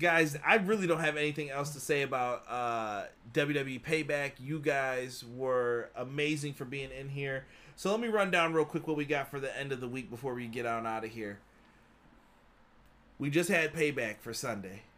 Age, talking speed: 30-49, 200 wpm